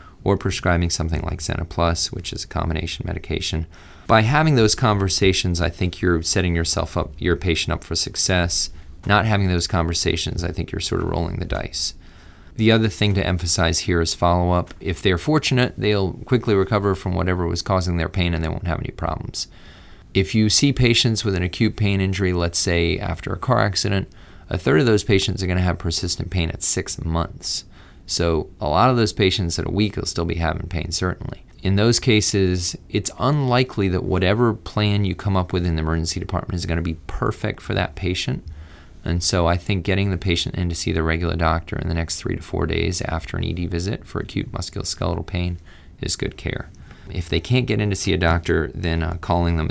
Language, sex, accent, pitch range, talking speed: English, male, American, 85-100 Hz, 210 wpm